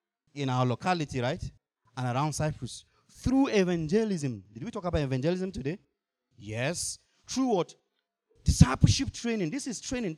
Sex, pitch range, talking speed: male, 120-180 Hz, 135 wpm